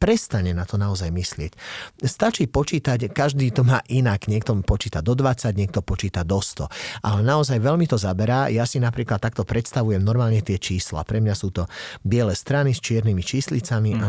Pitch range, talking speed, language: 105-125 Hz, 180 wpm, Slovak